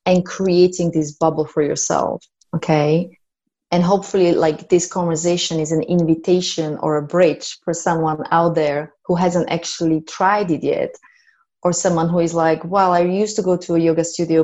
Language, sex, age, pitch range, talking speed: English, female, 30-49, 160-180 Hz, 175 wpm